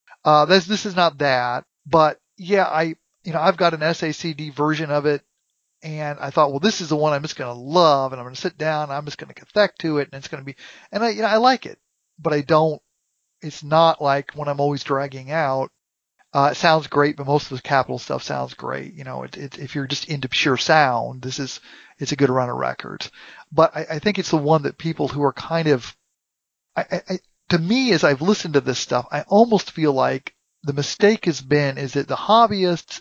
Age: 40-59